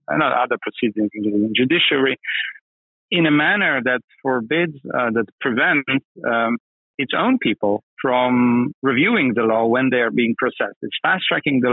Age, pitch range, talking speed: 40-59, 115-135 Hz, 155 wpm